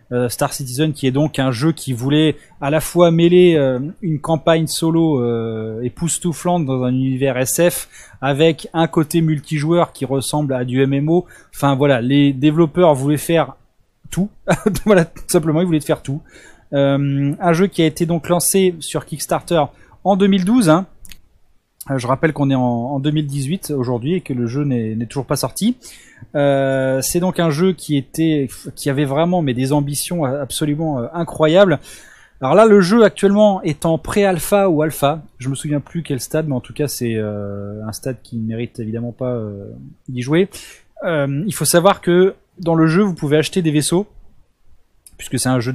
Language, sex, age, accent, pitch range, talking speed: French, male, 20-39, French, 130-170 Hz, 175 wpm